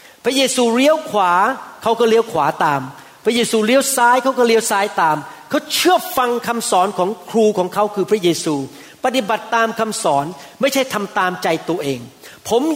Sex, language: male, Thai